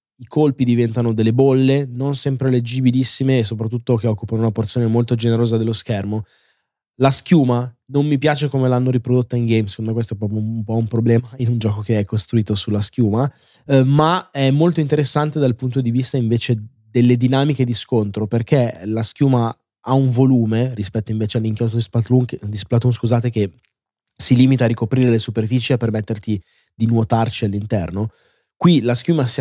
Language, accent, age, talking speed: Italian, native, 20-39, 185 wpm